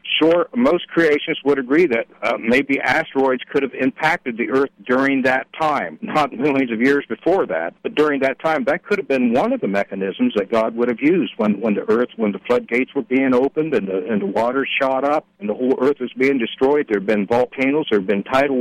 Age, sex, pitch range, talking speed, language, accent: 60-79, male, 115-140 Hz, 230 wpm, English, American